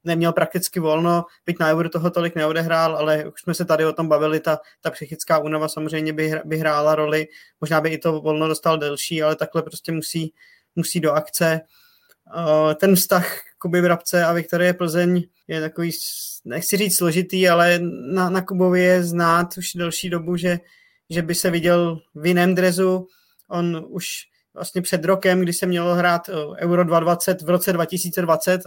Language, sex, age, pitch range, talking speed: Czech, male, 20-39, 160-180 Hz, 175 wpm